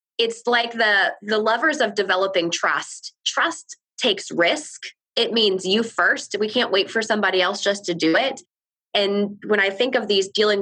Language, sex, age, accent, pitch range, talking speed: English, female, 20-39, American, 175-225 Hz, 180 wpm